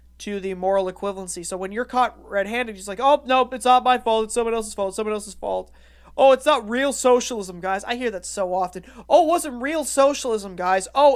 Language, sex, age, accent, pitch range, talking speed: English, male, 30-49, American, 200-270 Hz, 230 wpm